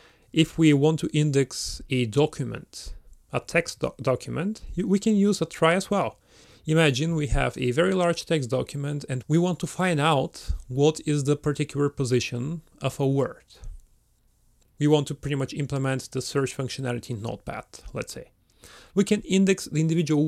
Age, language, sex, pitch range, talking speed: 30-49, English, male, 130-165 Hz, 170 wpm